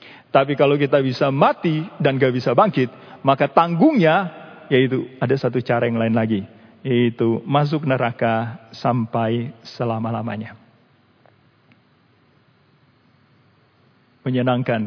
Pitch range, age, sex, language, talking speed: 120-155 Hz, 40-59, male, Indonesian, 95 wpm